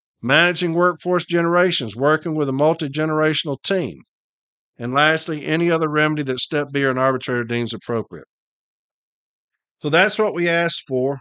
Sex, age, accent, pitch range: male, 50-69, American, 130-180 Hz